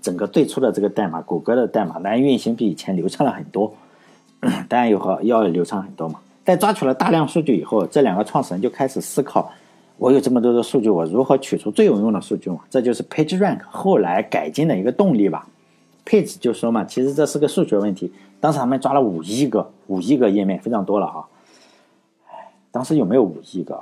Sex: male